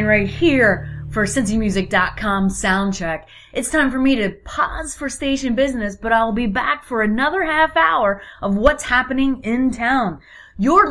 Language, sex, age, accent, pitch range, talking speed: English, female, 30-49, American, 195-275 Hz, 155 wpm